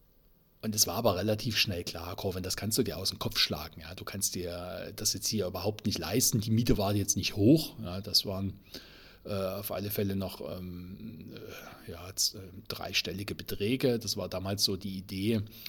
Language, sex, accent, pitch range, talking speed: German, male, German, 95-115 Hz, 205 wpm